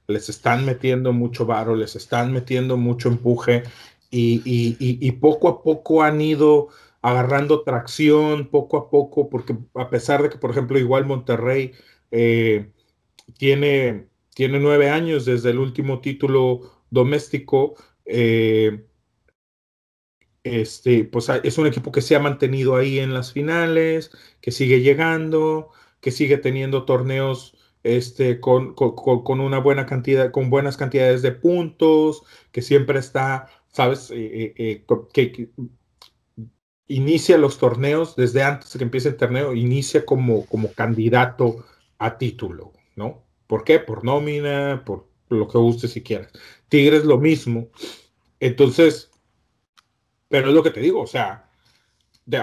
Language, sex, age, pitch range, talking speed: Spanish, male, 40-59, 120-145 Hz, 145 wpm